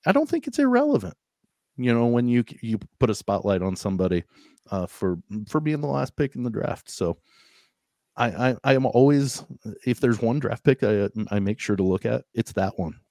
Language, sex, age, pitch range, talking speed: English, male, 30-49, 100-125 Hz, 210 wpm